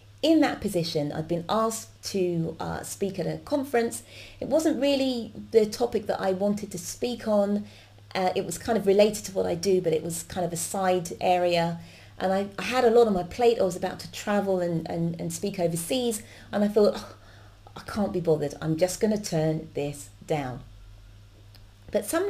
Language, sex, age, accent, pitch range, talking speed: English, female, 30-49, British, 155-220 Hz, 205 wpm